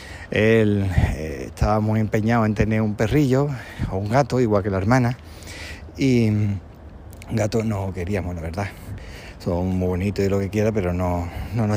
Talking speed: 170 wpm